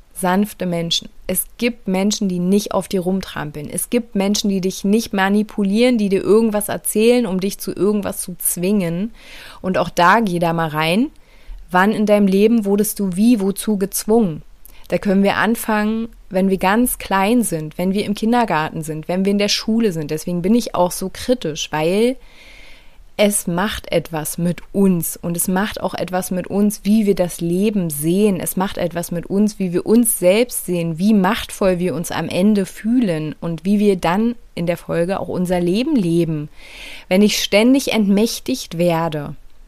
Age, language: 30-49, German